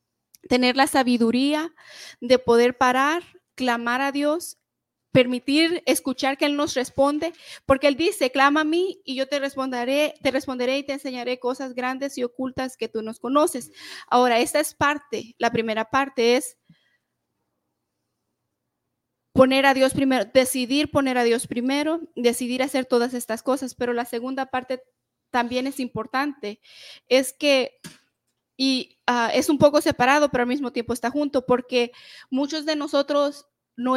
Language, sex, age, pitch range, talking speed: Spanish, female, 30-49, 245-285 Hz, 150 wpm